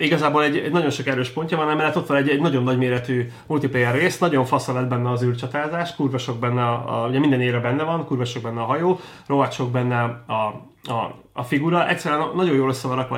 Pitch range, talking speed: 125-150 Hz, 210 wpm